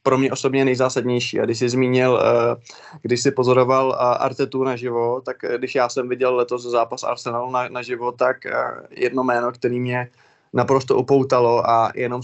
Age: 20-39